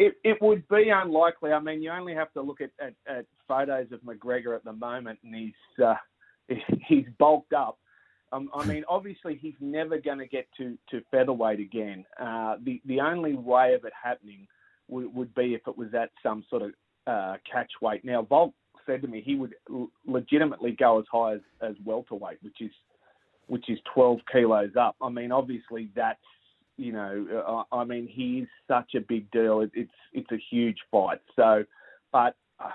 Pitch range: 115-150 Hz